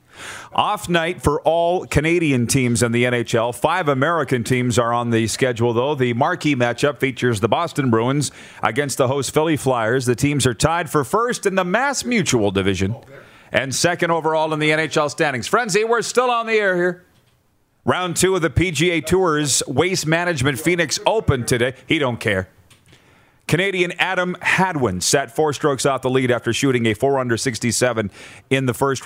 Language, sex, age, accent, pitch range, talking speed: English, male, 40-59, American, 125-160 Hz, 175 wpm